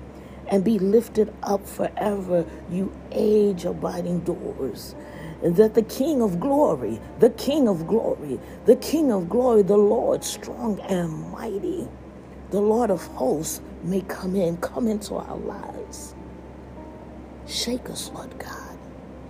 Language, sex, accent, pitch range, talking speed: English, female, American, 170-220 Hz, 125 wpm